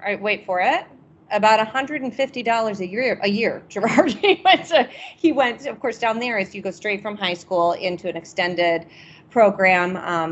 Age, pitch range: 30-49, 175-240 Hz